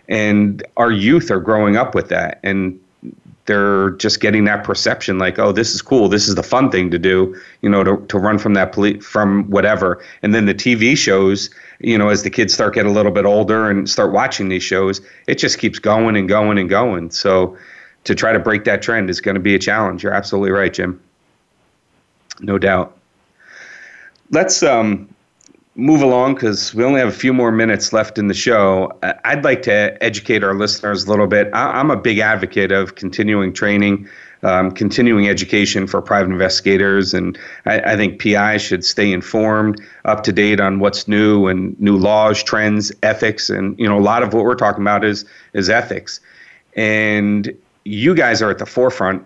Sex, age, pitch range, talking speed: male, 40-59, 95-105 Hz, 195 wpm